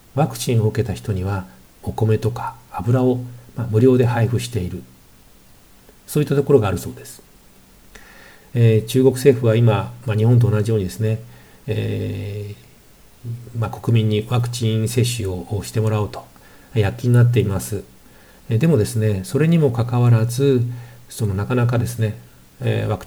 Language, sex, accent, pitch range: Japanese, male, native, 105-130 Hz